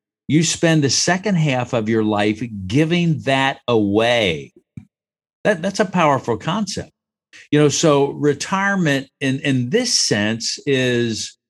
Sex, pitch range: male, 115-155 Hz